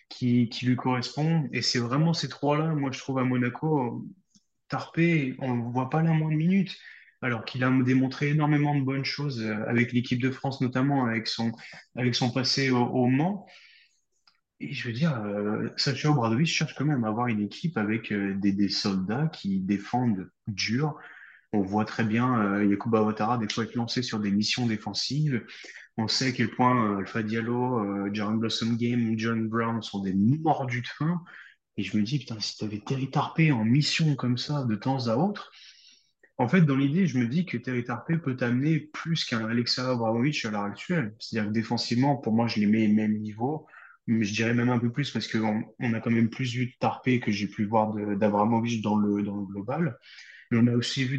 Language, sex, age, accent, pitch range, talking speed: French, male, 20-39, French, 110-140 Hz, 210 wpm